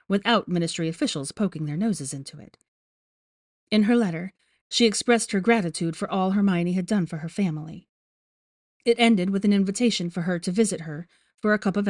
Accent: American